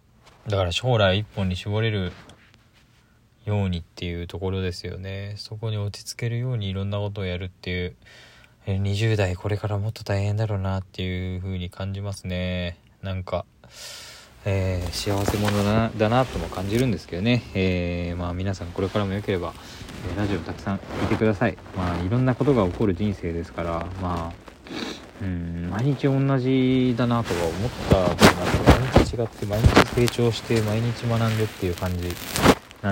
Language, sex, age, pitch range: Japanese, male, 20-39, 90-110 Hz